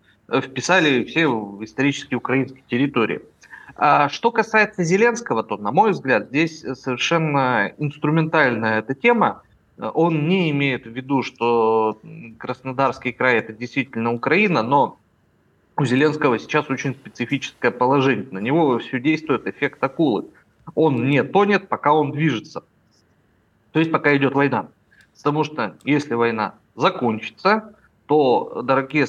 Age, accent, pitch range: 30-49, native, 120-155 Hz